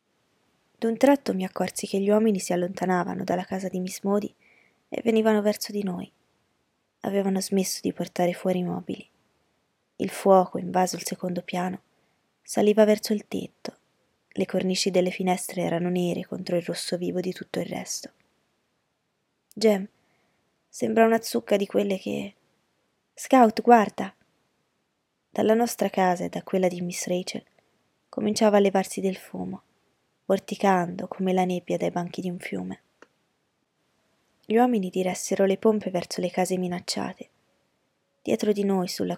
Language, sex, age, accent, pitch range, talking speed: Italian, female, 20-39, native, 180-215 Hz, 145 wpm